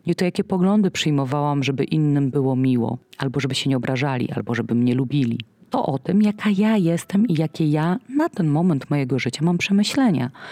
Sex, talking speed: female, 195 wpm